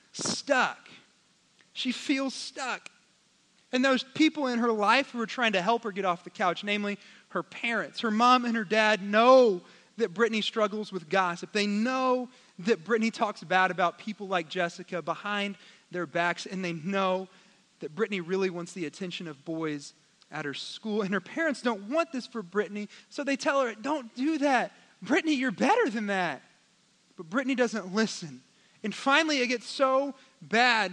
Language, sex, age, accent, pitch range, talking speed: English, male, 30-49, American, 205-275 Hz, 175 wpm